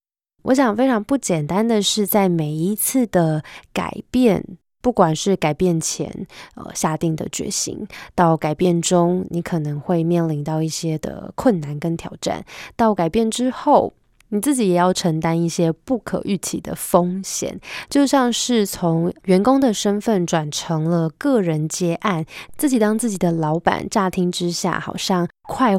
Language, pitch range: Chinese, 165-215 Hz